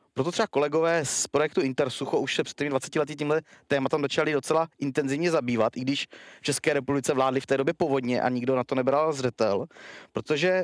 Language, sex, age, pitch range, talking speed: Czech, male, 30-49, 130-155 Hz, 190 wpm